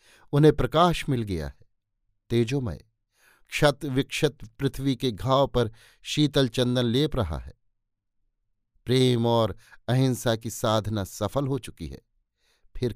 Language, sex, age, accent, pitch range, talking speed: Hindi, male, 50-69, native, 110-140 Hz, 125 wpm